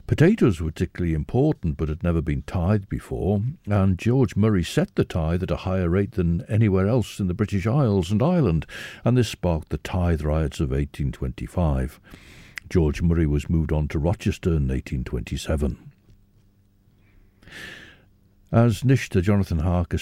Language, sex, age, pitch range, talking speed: English, male, 60-79, 85-110 Hz, 160 wpm